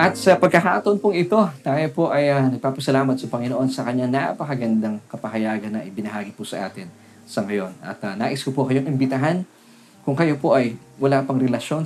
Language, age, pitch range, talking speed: Filipino, 20-39, 115-145 Hz, 190 wpm